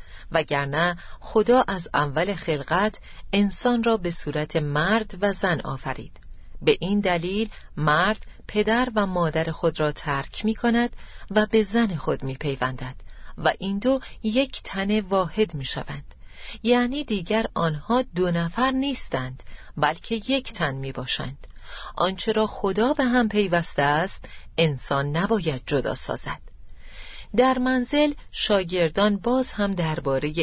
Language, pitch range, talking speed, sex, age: Persian, 160-220 Hz, 130 wpm, female, 40-59